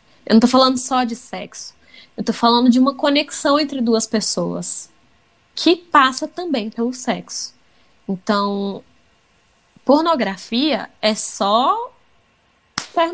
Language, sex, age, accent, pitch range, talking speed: Portuguese, female, 10-29, Brazilian, 215-290 Hz, 120 wpm